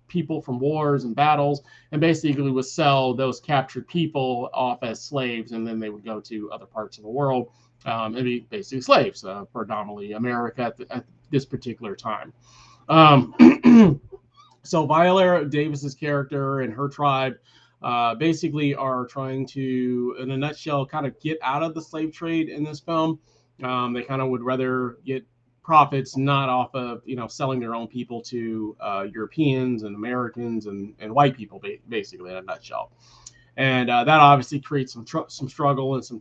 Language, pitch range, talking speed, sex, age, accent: English, 120-145 Hz, 180 wpm, male, 30-49, American